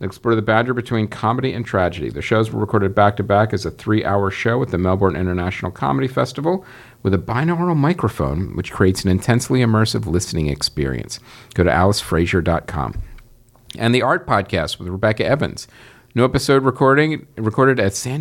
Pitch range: 100-125 Hz